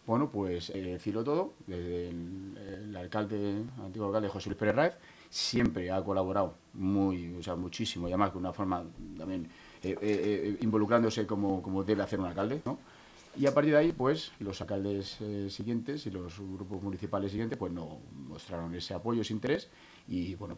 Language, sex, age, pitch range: Spanish, male, 30-49, 90-105 Hz